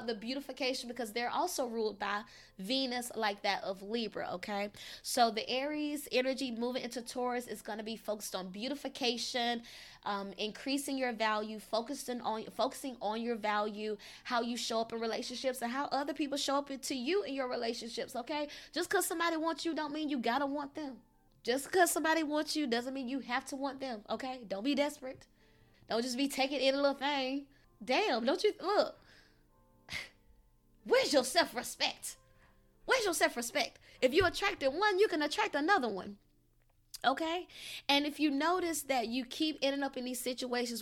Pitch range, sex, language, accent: 230-285 Hz, female, English, American